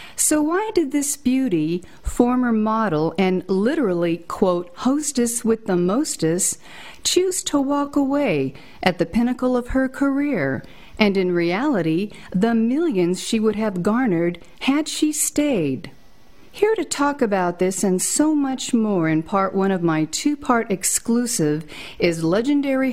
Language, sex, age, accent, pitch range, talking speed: English, female, 50-69, American, 185-275 Hz, 140 wpm